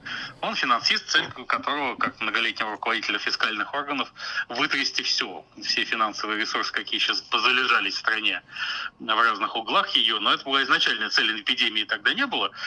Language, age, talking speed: Russian, 30-49, 150 wpm